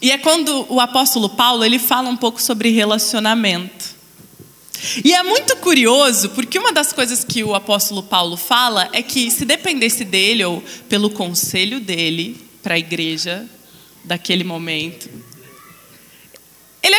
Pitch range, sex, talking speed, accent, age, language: 210-315 Hz, female, 140 wpm, Brazilian, 20-39, Portuguese